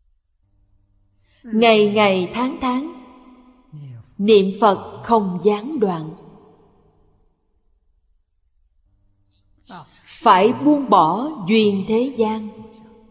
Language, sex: Vietnamese, female